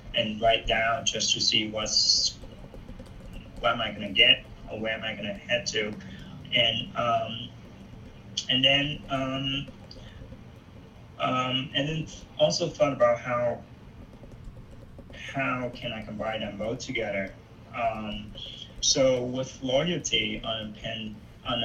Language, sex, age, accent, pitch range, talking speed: English, male, 20-39, American, 105-120 Hz, 135 wpm